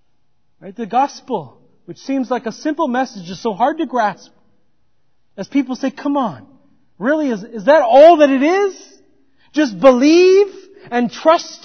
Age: 40-59